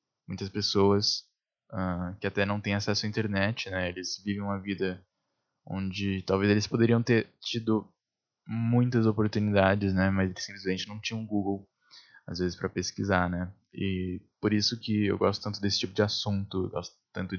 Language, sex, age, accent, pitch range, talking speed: Portuguese, male, 10-29, Brazilian, 95-110 Hz, 175 wpm